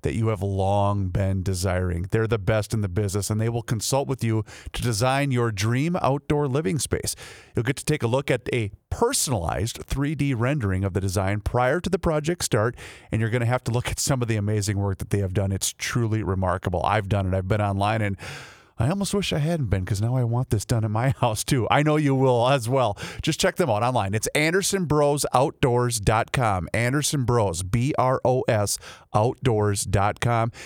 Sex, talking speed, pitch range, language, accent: male, 200 wpm, 105-145 Hz, English, American